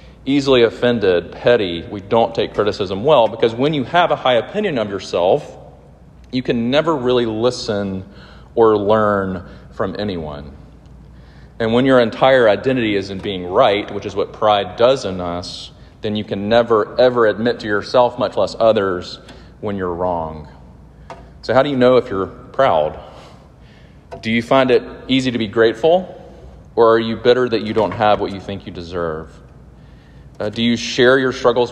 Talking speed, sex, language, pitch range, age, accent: 170 wpm, male, English, 90-120 Hz, 40-59, American